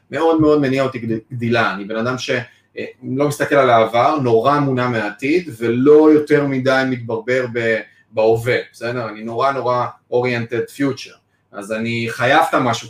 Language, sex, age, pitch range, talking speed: Hebrew, male, 30-49, 115-145 Hz, 160 wpm